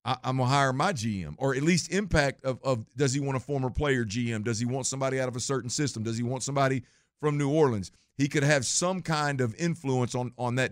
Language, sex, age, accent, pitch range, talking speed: English, male, 50-69, American, 120-150 Hz, 250 wpm